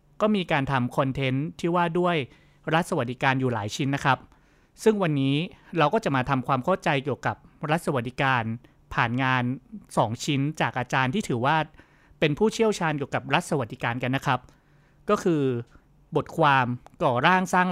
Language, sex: Thai, male